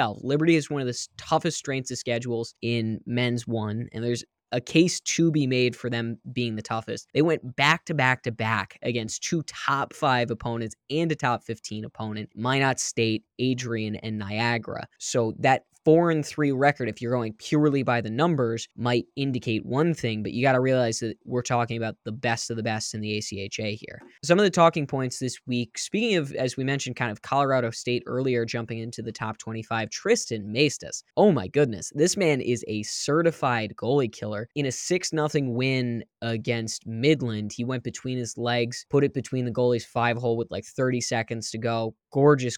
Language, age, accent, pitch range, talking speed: English, 10-29, American, 115-145 Hz, 200 wpm